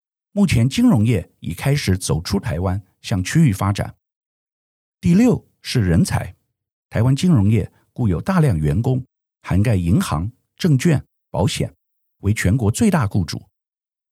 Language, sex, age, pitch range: Chinese, male, 50-69, 95-140 Hz